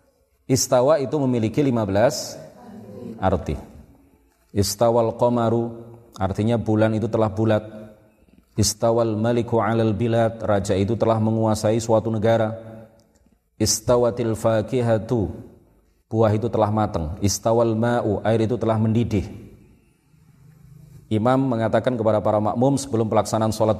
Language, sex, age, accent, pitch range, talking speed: Indonesian, male, 30-49, native, 100-120 Hz, 105 wpm